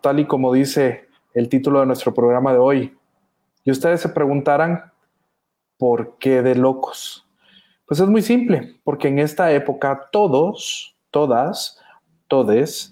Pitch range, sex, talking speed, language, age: 130-185 Hz, male, 140 wpm, Spanish, 30-49